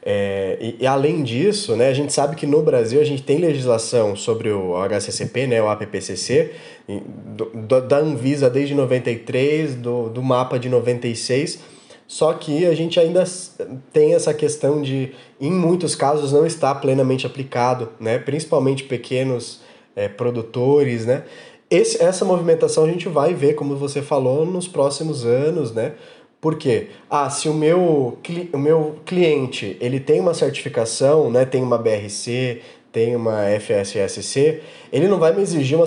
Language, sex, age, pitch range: Portuguese, male, 20-39, 125-165 Hz